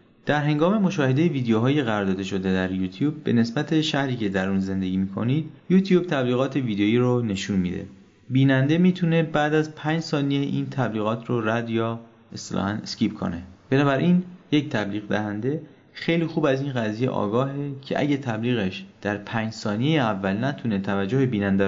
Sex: male